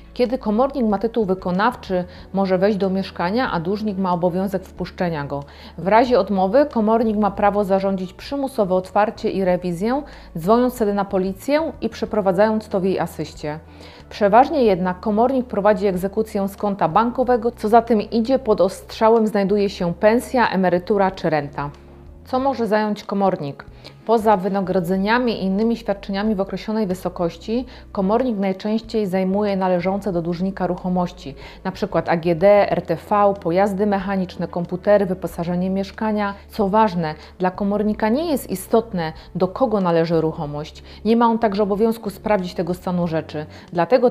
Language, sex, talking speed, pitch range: Polish, female, 140 wpm, 185-220 Hz